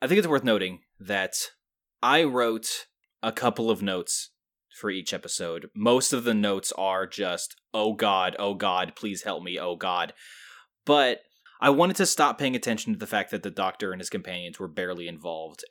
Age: 20-39